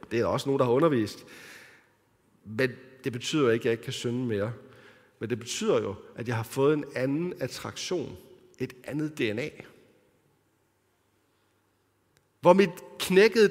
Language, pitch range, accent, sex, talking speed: Danish, 120-170 Hz, native, male, 155 wpm